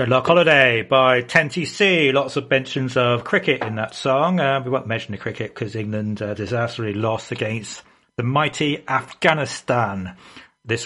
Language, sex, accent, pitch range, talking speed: English, male, British, 105-130 Hz, 160 wpm